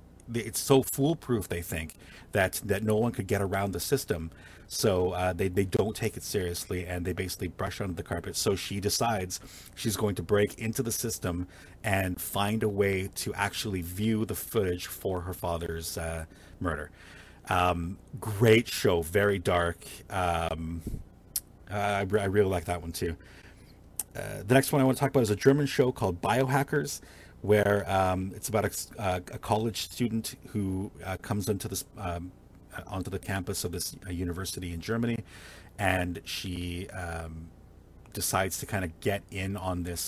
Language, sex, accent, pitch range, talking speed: English, male, American, 90-105 Hz, 170 wpm